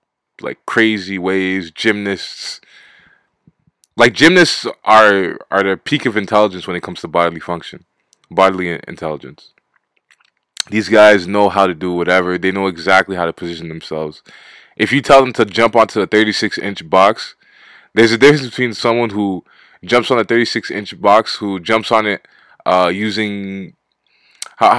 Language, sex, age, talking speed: English, male, 20-39, 150 wpm